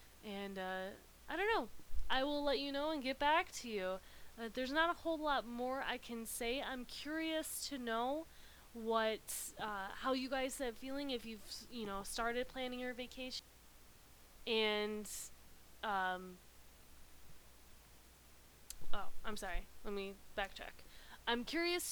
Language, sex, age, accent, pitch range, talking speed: English, female, 20-39, American, 210-250 Hz, 150 wpm